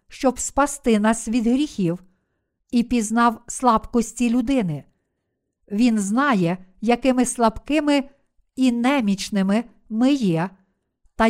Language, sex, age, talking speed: Ukrainian, female, 50-69, 95 wpm